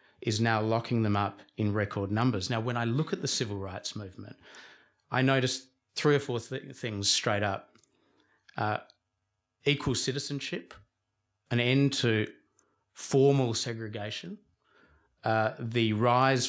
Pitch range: 105-125 Hz